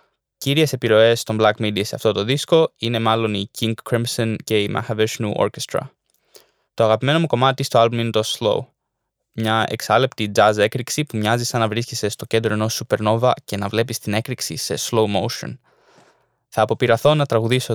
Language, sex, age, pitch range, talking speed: Greek, male, 20-39, 110-130 Hz, 180 wpm